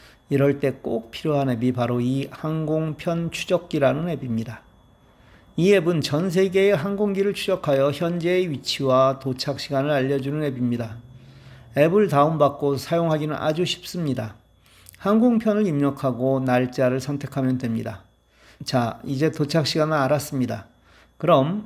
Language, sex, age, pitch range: Korean, male, 40-59, 130-170 Hz